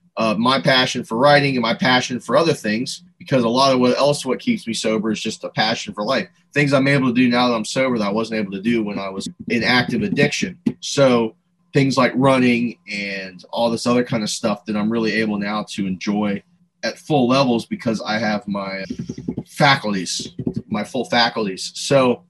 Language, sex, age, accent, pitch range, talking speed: English, male, 30-49, American, 110-145 Hz, 210 wpm